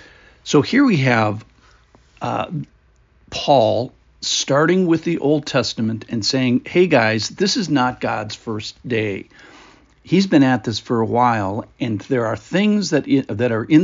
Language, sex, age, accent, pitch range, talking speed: English, male, 50-69, American, 110-150 Hz, 155 wpm